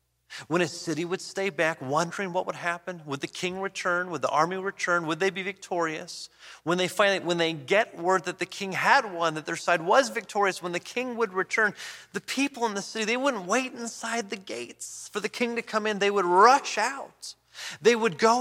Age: 30-49